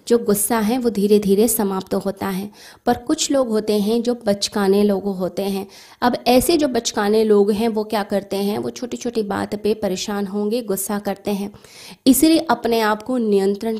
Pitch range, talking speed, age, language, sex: 200-235 Hz, 190 wpm, 20-39, Hindi, female